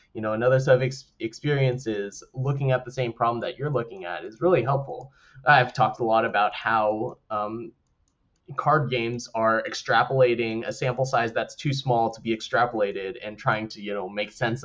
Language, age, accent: English, 20-39, American